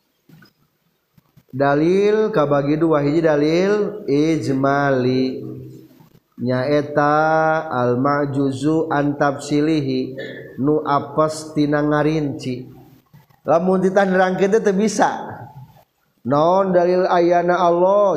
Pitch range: 150-190 Hz